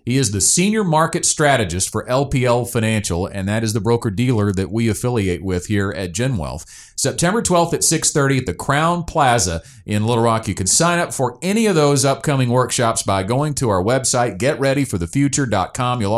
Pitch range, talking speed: 100-130 Hz, 195 wpm